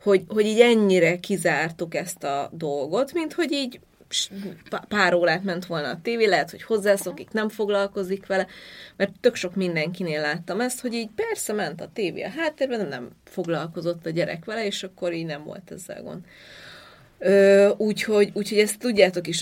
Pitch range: 165-200 Hz